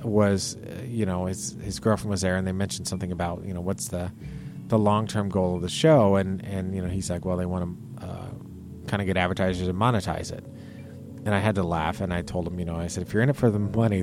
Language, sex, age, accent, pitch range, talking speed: English, male, 30-49, American, 90-115 Hz, 260 wpm